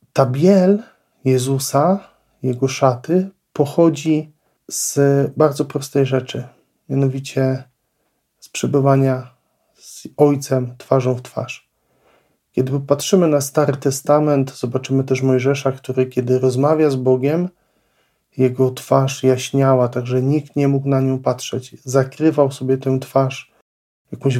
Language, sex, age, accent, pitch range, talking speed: Polish, male, 40-59, native, 130-140 Hz, 115 wpm